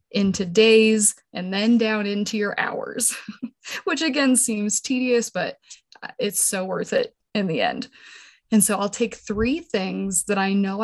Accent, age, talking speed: American, 20-39, 160 wpm